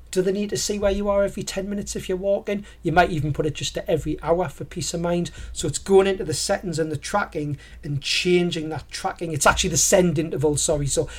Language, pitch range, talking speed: English, 150-175 Hz, 250 wpm